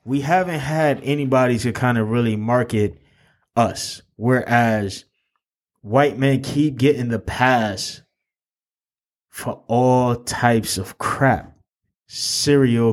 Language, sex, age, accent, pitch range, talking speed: English, male, 20-39, American, 105-135 Hz, 105 wpm